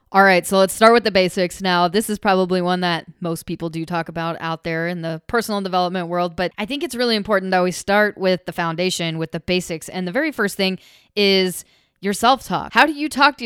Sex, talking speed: female, 240 wpm